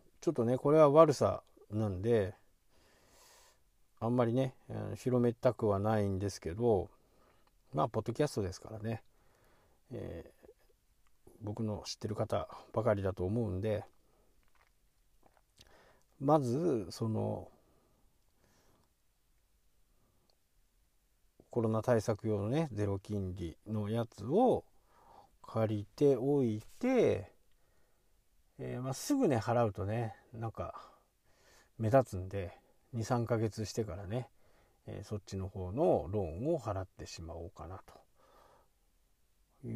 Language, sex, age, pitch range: Japanese, male, 50-69, 100-125 Hz